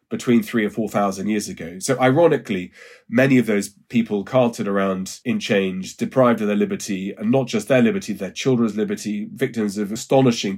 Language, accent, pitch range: English, British, 100-135 Hz